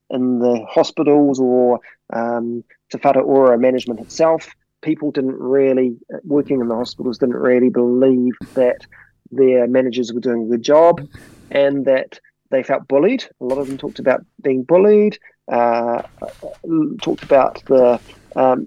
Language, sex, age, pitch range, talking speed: English, male, 30-49, 120-145 Hz, 145 wpm